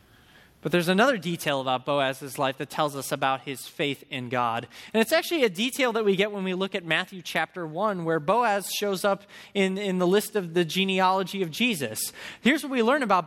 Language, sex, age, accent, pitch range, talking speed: English, male, 20-39, American, 165-230 Hz, 215 wpm